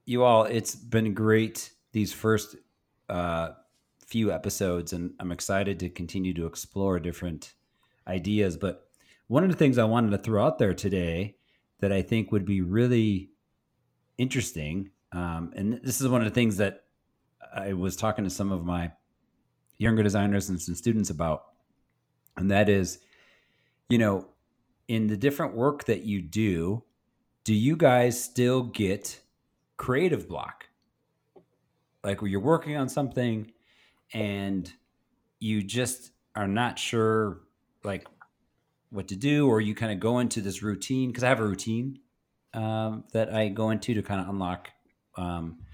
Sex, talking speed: male, 155 wpm